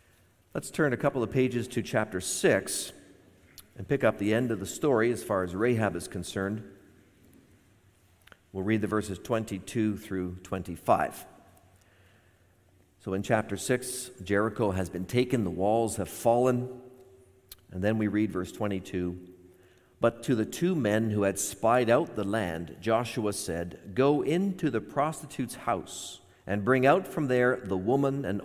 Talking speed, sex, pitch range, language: 155 wpm, male, 95-130 Hz, English